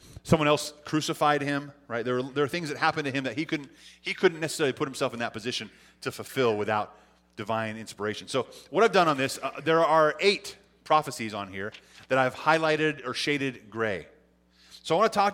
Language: English